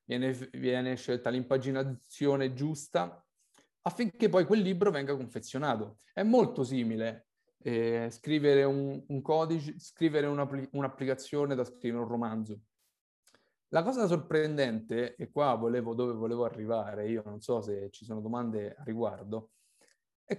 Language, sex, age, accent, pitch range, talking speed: Italian, male, 30-49, native, 120-155 Hz, 125 wpm